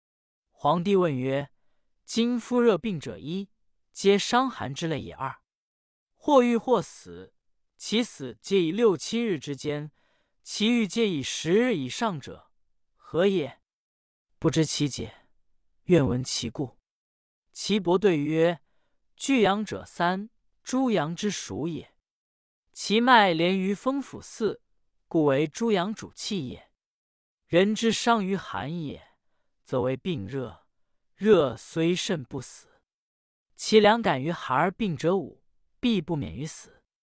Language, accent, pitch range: Chinese, native, 140-210 Hz